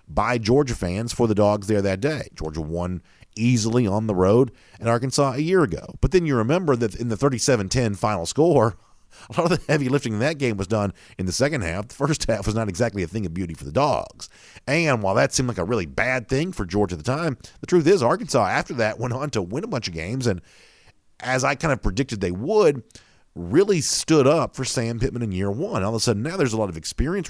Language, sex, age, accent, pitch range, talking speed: English, male, 40-59, American, 100-135 Hz, 250 wpm